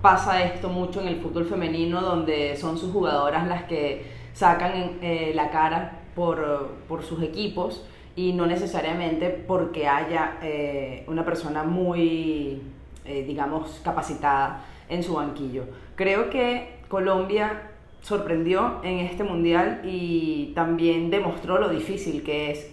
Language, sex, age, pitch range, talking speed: Spanish, female, 20-39, 155-175 Hz, 130 wpm